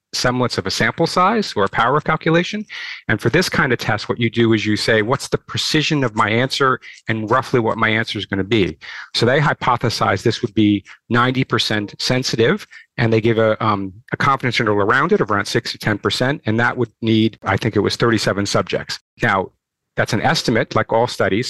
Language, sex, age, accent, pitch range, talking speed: English, male, 40-59, American, 110-135 Hz, 220 wpm